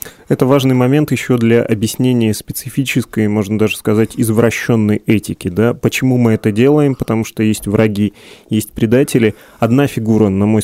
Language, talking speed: Russian, 150 wpm